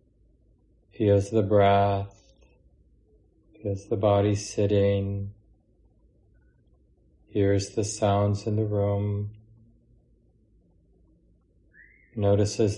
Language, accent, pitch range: English, American, 100-110 Hz